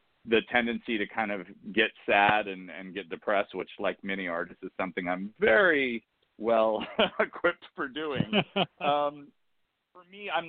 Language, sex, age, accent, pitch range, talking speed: English, male, 40-59, American, 100-135 Hz, 155 wpm